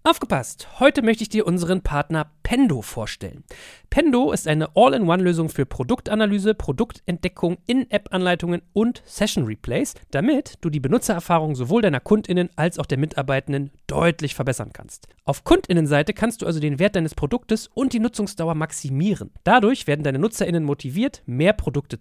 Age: 40-59